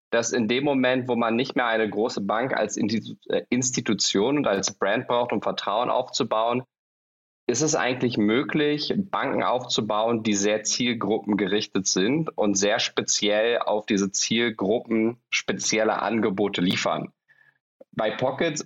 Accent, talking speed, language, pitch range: German, 130 wpm, German, 105-120 Hz